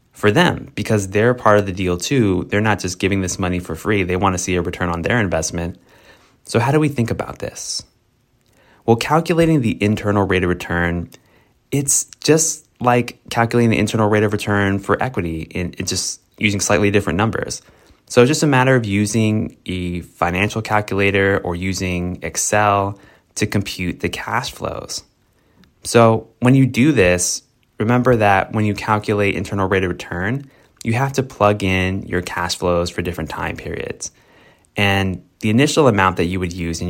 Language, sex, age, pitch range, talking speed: English, male, 20-39, 90-110 Hz, 180 wpm